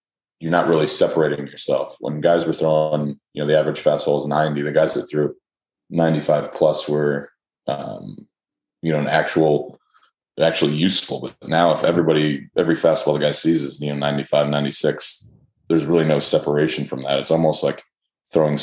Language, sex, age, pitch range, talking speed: English, male, 20-39, 70-80 Hz, 175 wpm